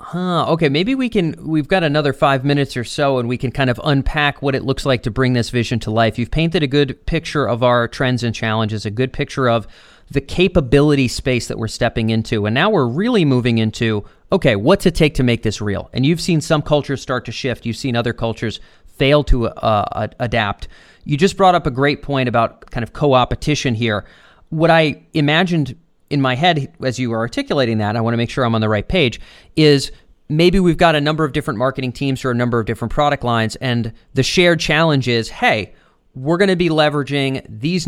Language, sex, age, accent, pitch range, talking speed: English, male, 30-49, American, 120-155 Hz, 225 wpm